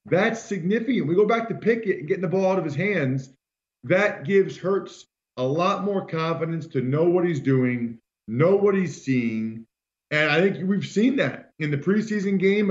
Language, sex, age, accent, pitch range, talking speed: English, male, 40-59, American, 135-185 Hz, 190 wpm